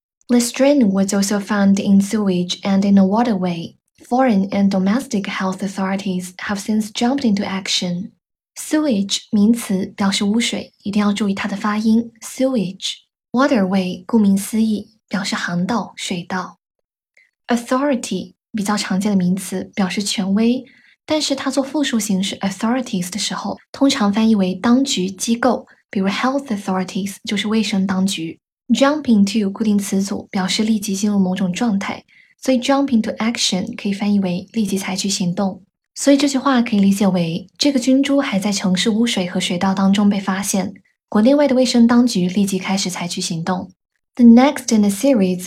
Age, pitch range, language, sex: 10-29, 190-235 Hz, Chinese, female